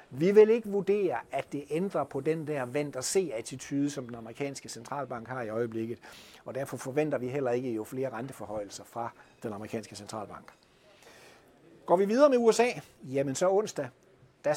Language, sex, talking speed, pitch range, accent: Danish, male, 165 wpm, 130-180 Hz, native